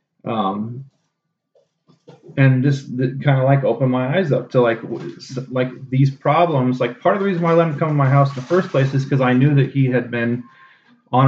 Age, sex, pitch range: 30-49, male, 120-145 Hz